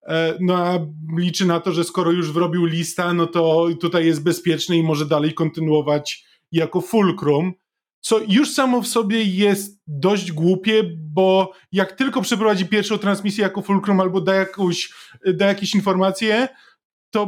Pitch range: 170-205 Hz